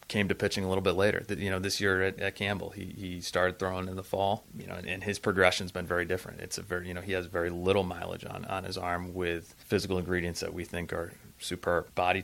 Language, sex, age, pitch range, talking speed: English, male, 30-49, 90-100 Hz, 260 wpm